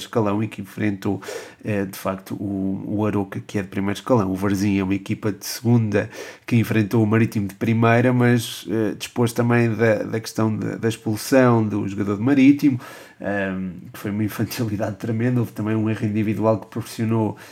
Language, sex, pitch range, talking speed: Portuguese, male, 105-115 Hz, 185 wpm